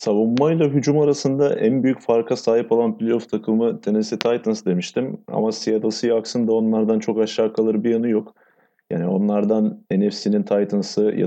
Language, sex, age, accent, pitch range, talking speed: Turkish, male, 30-49, native, 100-125 Hz, 160 wpm